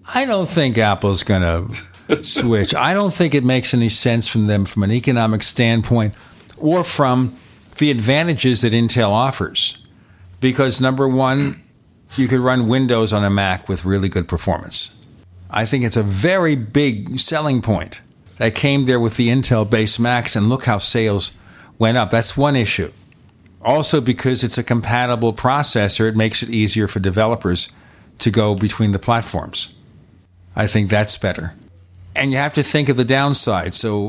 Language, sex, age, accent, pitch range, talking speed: English, male, 50-69, American, 100-130 Hz, 165 wpm